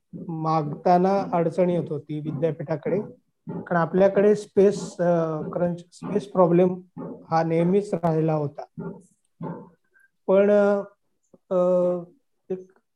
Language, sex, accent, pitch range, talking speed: Marathi, male, native, 165-190 Hz, 80 wpm